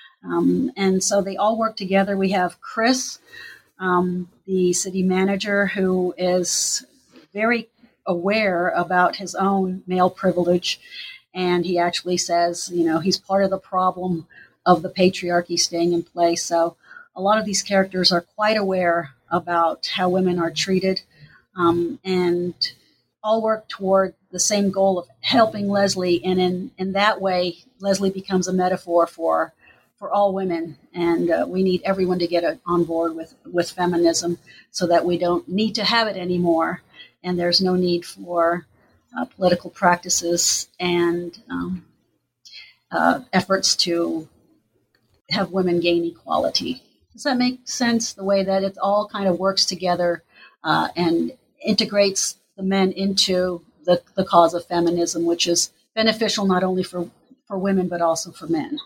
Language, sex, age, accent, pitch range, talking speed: English, female, 40-59, American, 175-195 Hz, 155 wpm